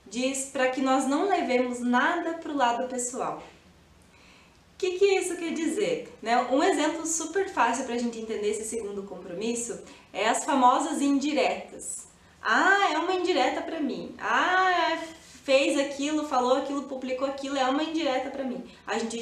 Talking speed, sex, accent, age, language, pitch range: 160 wpm, female, Brazilian, 20-39, Portuguese, 245-320 Hz